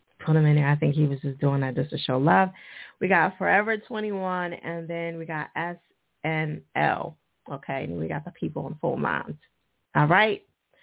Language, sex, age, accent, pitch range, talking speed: English, female, 30-49, American, 155-210 Hz, 200 wpm